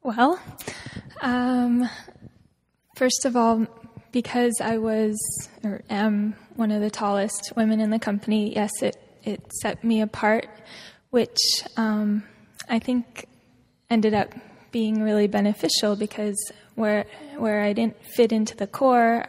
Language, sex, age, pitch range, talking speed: English, female, 10-29, 210-235 Hz, 130 wpm